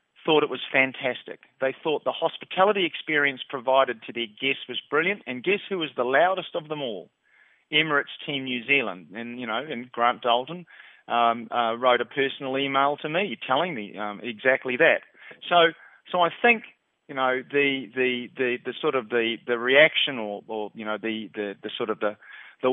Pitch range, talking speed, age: 115-140 Hz, 195 wpm, 40-59